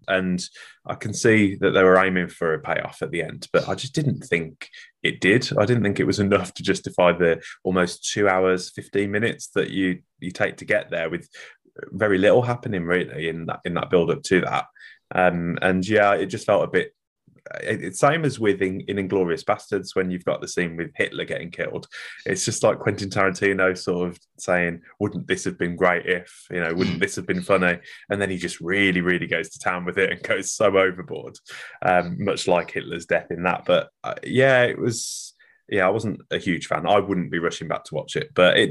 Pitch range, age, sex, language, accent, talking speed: 85-100 Hz, 20-39, male, English, British, 225 wpm